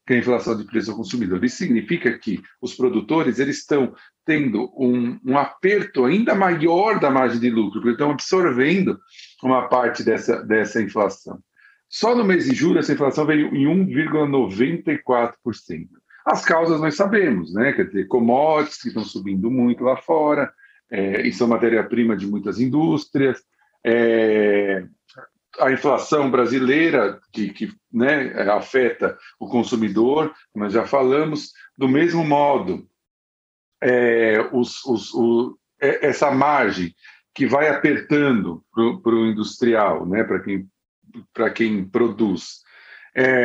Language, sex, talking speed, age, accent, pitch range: Portuguese, male, 140 wpm, 50-69, Brazilian, 115-150 Hz